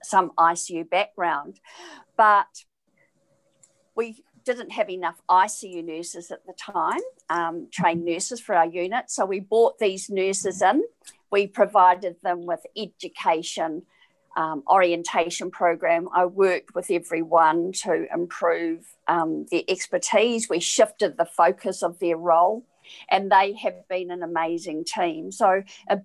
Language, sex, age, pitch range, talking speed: English, female, 50-69, 170-215 Hz, 135 wpm